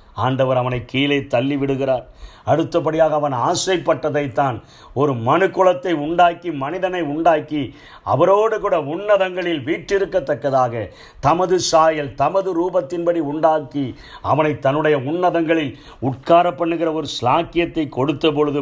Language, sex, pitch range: Tamil, male, 125-170 Hz